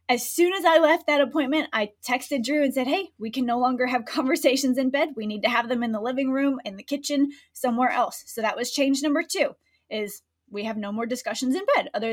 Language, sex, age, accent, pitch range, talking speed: English, female, 20-39, American, 225-285 Hz, 245 wpm